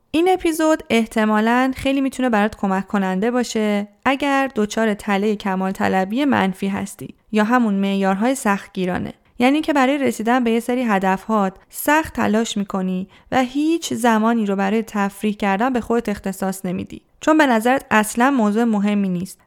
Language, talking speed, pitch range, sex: Persian, 155 wpm, 200-255 Hz, female